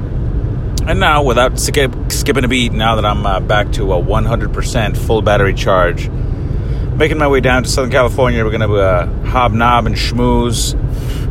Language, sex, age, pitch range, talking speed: English, male, 30-49, 105-130 Hz, 175 wpm